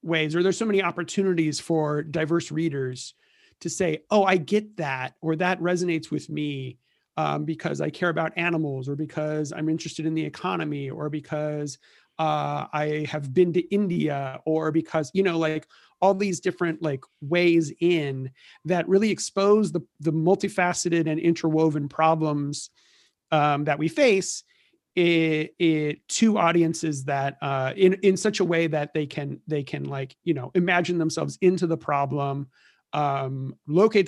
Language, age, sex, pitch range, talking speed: English, 40-59, male, 150-180 Hz, 155 wpm